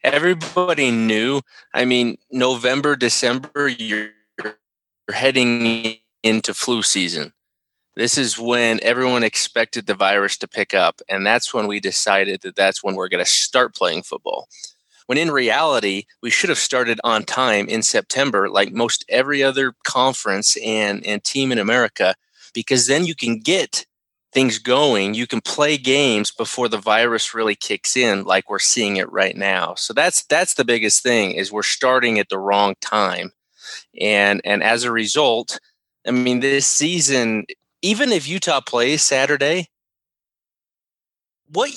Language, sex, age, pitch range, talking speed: English, male, 20-39, 110-150 Hz, 155 wpm